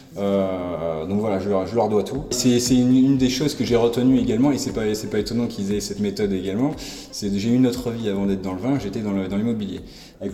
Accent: French